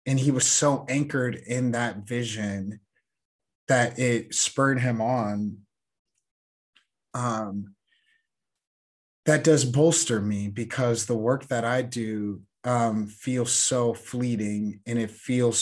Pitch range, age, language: 110-130 Hz, 30-49, English